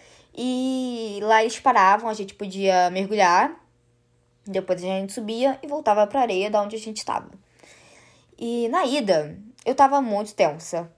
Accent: Brazilian